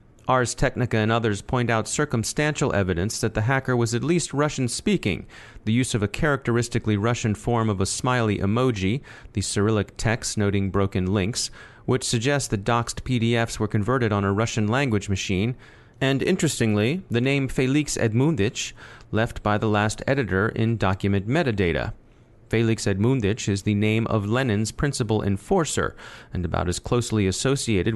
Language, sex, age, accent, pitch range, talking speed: English, male, 30-49, American, 105-125 Hz, 155 wpm